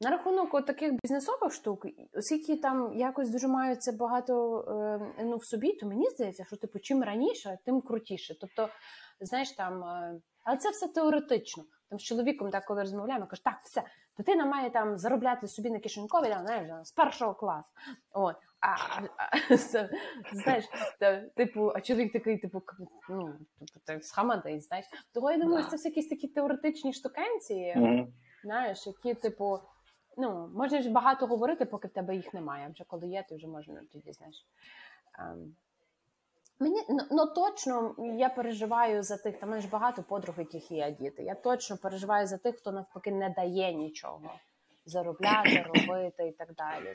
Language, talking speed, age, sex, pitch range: Ukrainian, 150 wpm, 20-39, female, 190-260 Hz